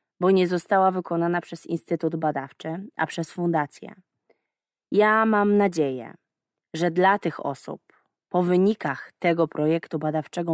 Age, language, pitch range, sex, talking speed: 20-39, Polish, 155-195 Hz, female, 125 wpm